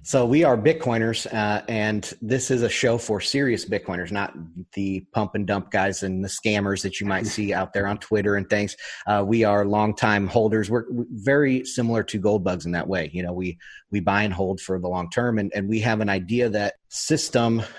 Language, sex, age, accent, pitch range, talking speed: English, male, 30-49, American, 100-115 Hz, 225 wpm